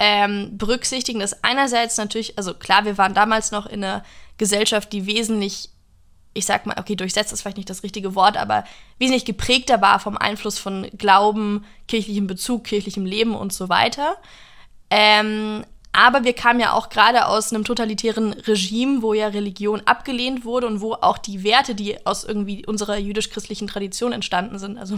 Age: 20-39